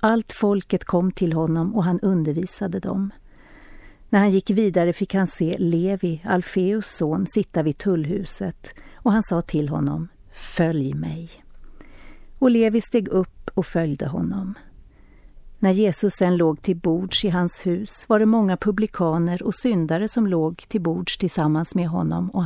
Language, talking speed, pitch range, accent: Swedish, 160 wpm, 165-205 Hz, native